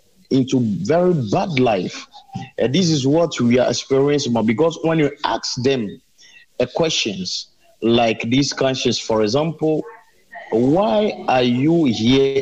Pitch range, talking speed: 115-155 Hz, 125 wpm